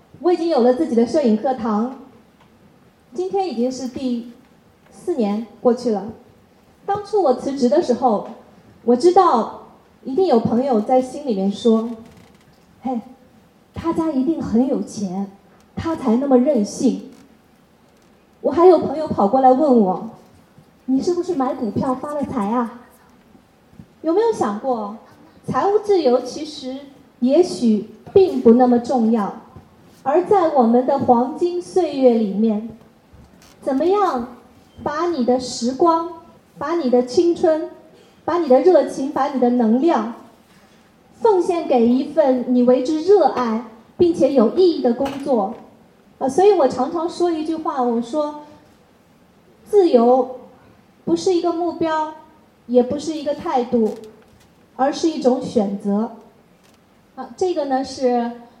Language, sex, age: Chinese, female, 20-39